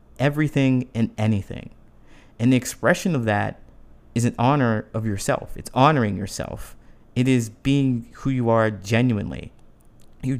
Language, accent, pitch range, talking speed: English, American, 110-130 Hz, 140 wpm